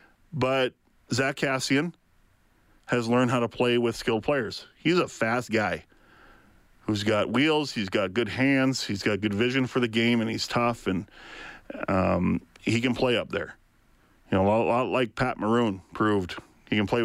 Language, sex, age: English, male, 40-59